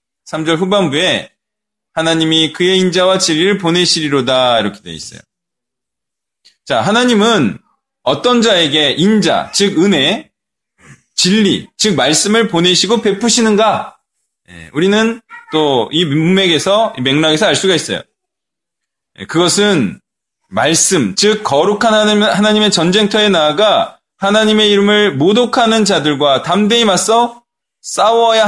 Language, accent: Korean, native